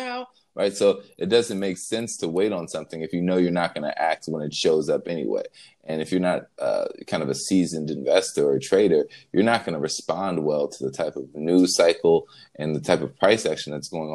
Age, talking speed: 20-39, 235 wpm